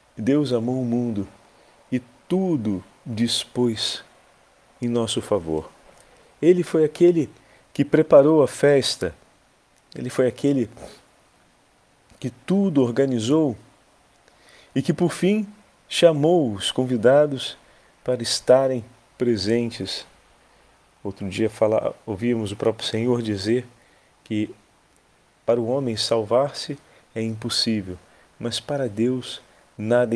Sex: male